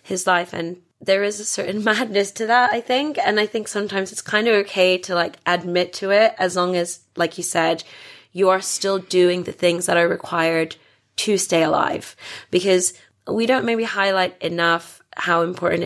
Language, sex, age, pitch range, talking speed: English, female, 20-39, 170-200 Hz, 195 wpm